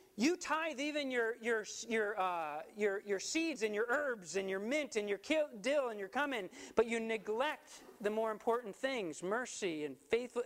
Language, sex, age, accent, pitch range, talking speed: English, male, 40-59, American, 160-235 Hz, 185 wpm